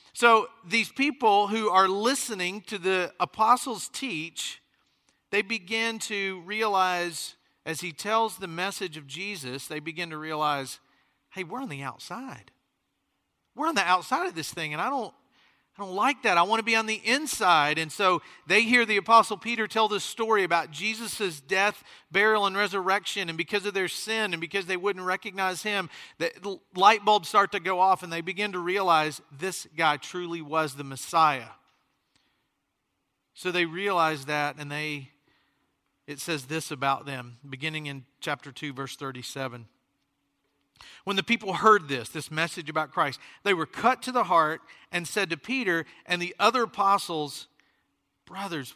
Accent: American